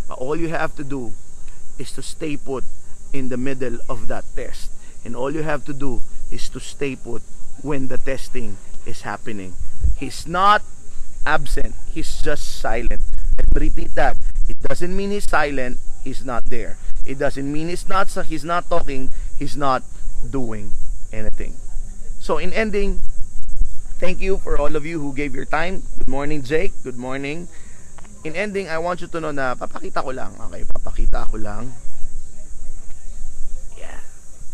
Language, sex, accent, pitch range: Filipino, male, native, 100-145 Hz